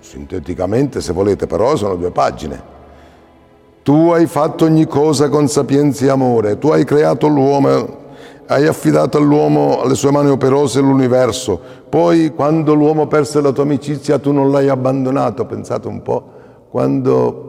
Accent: native